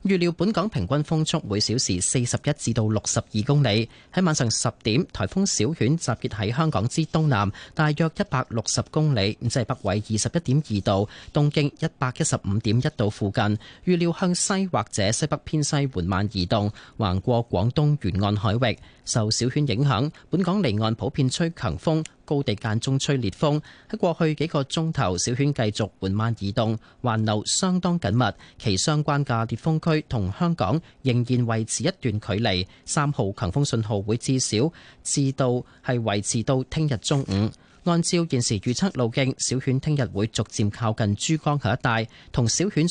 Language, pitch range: Chinese, 110-150 Hz